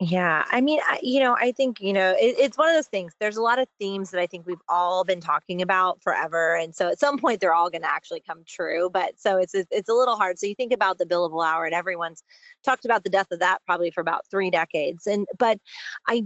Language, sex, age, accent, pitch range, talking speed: English, female, 30-49, American, 170-230 Hz, 260 wpm